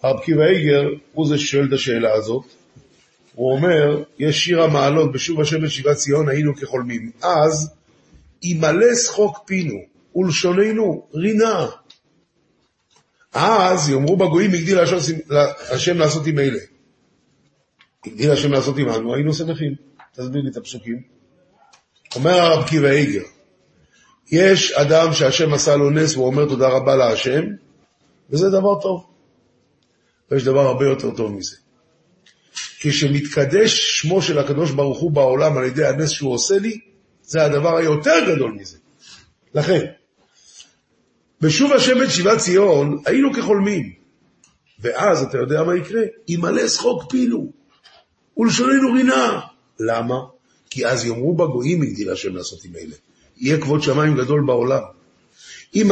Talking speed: 125 wpm